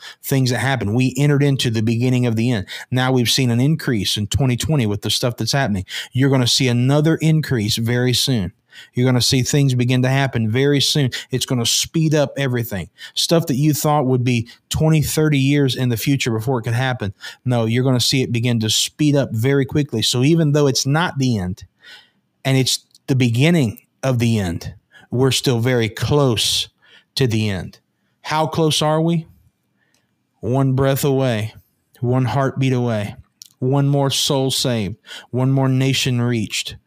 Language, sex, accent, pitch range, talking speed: English, male, American, 115-135 Hz, 185 wpm